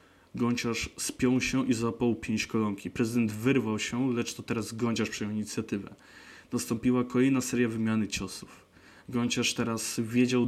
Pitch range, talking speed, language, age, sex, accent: 110-125 Hz, 135 wpm, Polish, 20-39, male, native